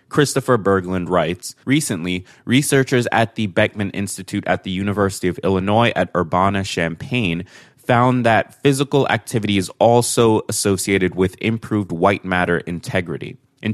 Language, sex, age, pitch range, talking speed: English, male, 20-39, 95-125 Hz, 125 wpm